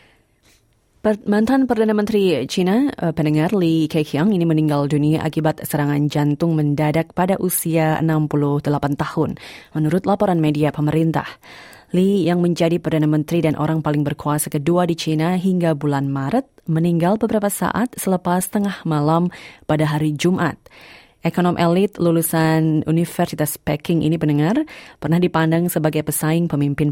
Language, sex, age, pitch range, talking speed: Indonesian, female, 20-39, 150-180 Hz, 130 wpm